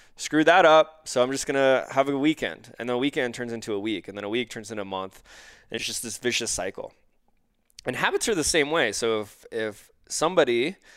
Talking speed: 230 wpm